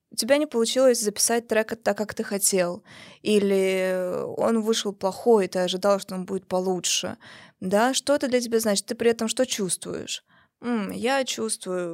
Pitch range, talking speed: 195-240 Hz, 170 wpm